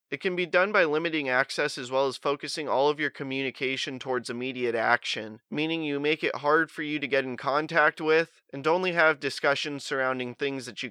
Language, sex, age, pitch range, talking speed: English, male, 30-49, 130-155 Hz, 210 wpm